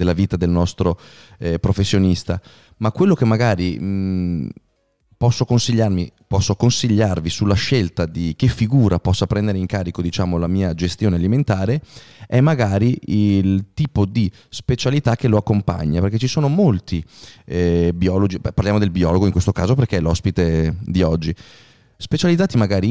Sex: male